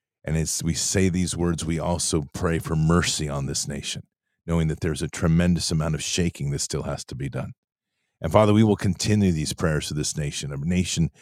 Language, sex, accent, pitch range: English, male, American, 80-90 Hz